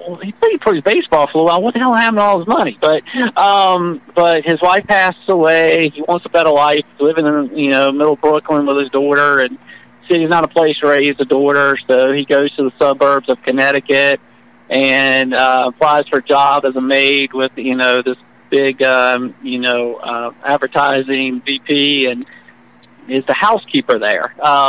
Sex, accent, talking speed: male, American, 195 wpm